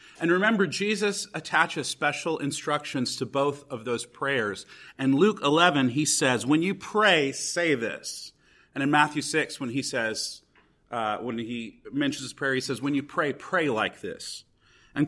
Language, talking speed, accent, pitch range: English, 170 wpm, American, 125-160 Hz